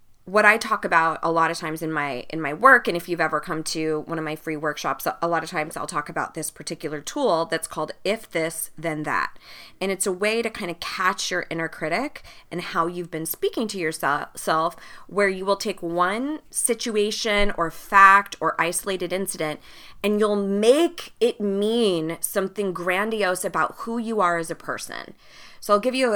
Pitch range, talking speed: 165-205 Hz, 200 wpm